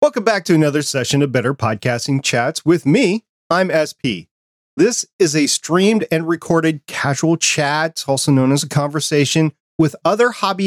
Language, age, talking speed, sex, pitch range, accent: English, 40-59, 165 wpm, male, 130-175 Hz, American